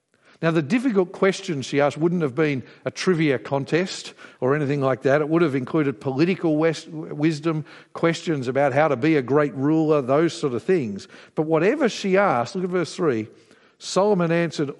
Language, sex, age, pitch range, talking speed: English, male, 50-69, 125-170 Hz, 180 wpm